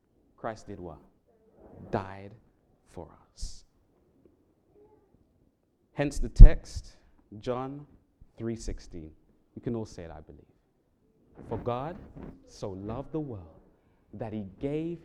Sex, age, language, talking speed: male, 30-49, English, 110 wpm